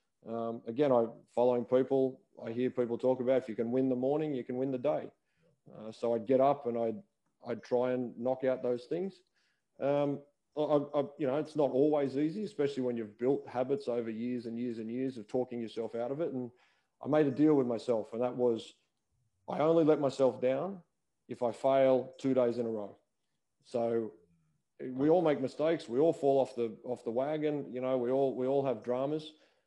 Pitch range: 120-140 Hz